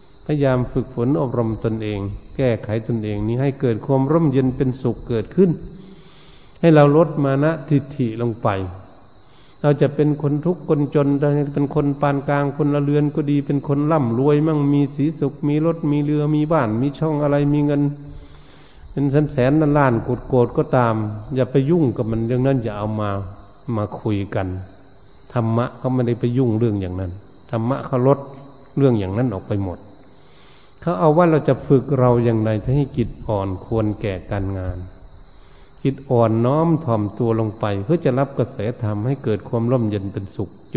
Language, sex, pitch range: Thai, male, 105-145 Hz